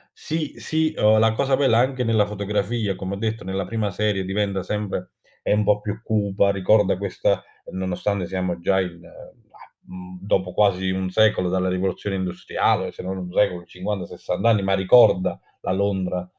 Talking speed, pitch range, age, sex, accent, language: 160 wpm, 95-115 Hz, 30-49, male, native, Italian